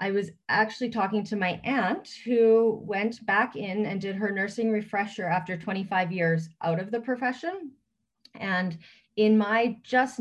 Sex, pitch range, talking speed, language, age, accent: female, 170-225 Hz, 160 wpm, English, 30-49, American